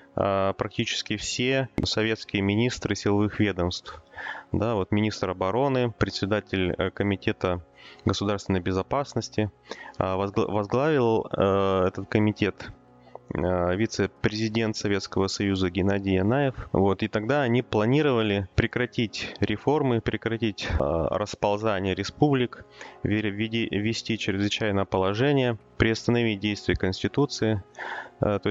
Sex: male